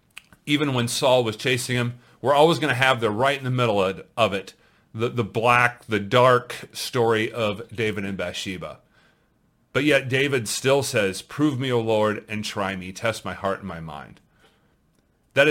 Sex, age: male, 30-49